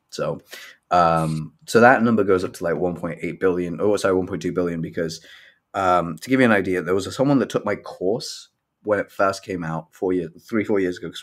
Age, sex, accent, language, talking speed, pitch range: 30-49, male, British, English, 225 wpm, 80-95 Hz